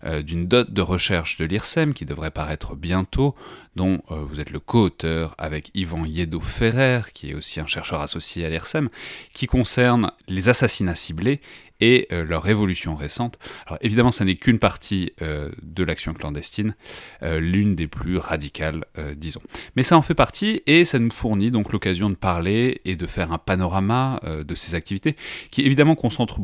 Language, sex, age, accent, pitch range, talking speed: French, male, 30-49, French, 80-110 Hz, 180 wpm